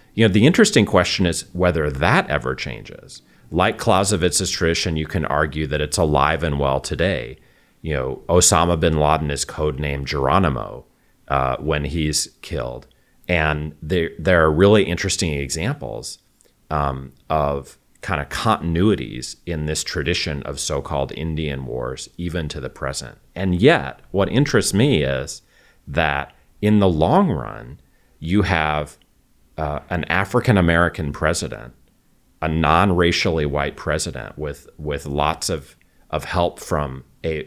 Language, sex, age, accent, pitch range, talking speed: English, male, 40-59, American, 75-95 Hz, 140 wpm